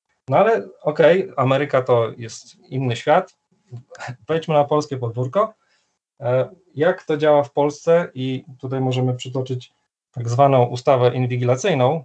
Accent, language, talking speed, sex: native, Polish, 125 wpm, male